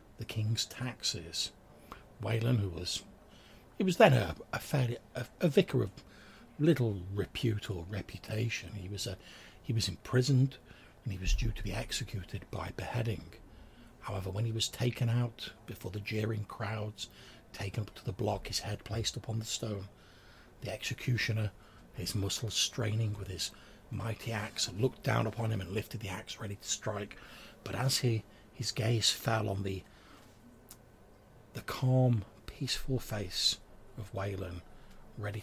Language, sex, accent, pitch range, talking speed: English, male, British, 100-120 Hz, 155 wpm